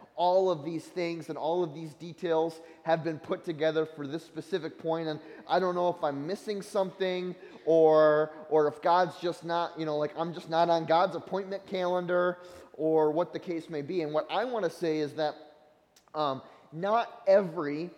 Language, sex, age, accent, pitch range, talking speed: English, male, 20-39, American, 155-180 Hz, 195 wpm